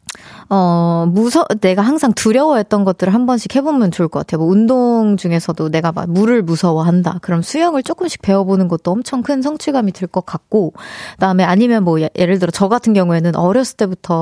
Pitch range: 185-260 Hz